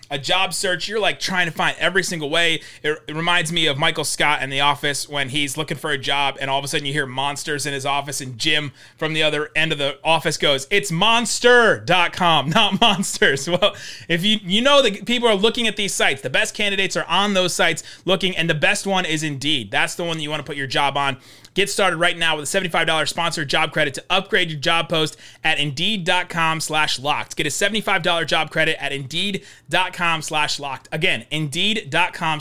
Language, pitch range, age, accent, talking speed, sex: English, 150-195 Hz, 30-49, American, 220 wpm, male